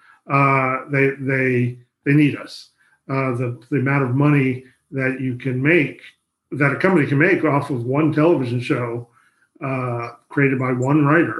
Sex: male